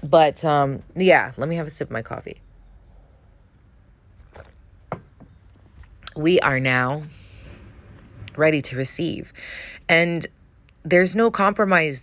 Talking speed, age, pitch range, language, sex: 105 wpm, 30-49, 105-145 Hz, English, female